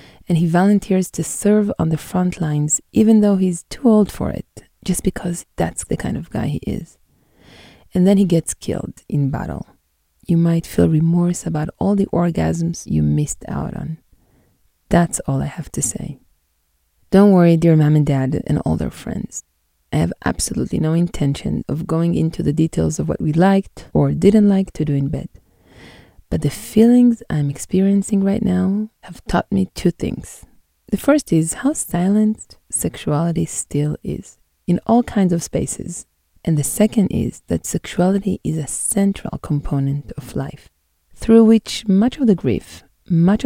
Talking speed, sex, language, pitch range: 170 wpm, female, English, 145-195 Hz